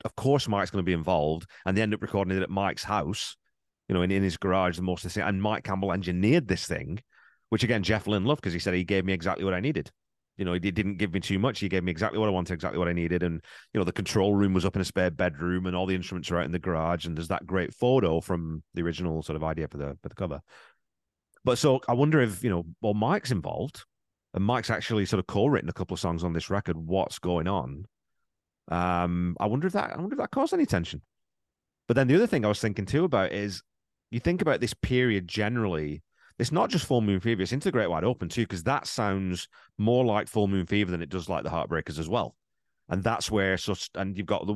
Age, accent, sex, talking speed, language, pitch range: 30-49, British, male, 265 wpm, English, 90-110 Hz